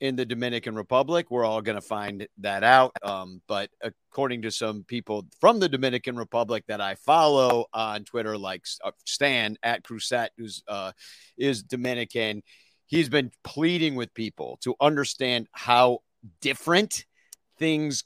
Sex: male